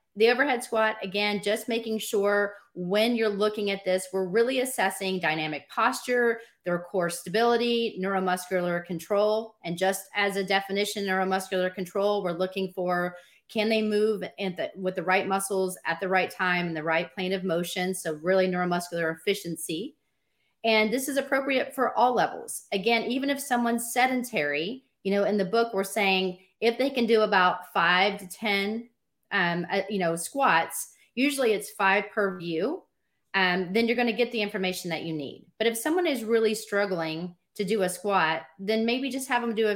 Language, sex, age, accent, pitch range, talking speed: English, female, 30-49, American, 180-220 Hz, 185 wpm